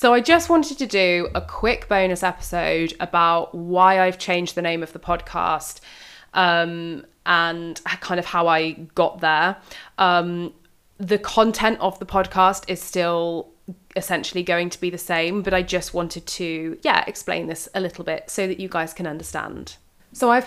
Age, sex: 20-39, female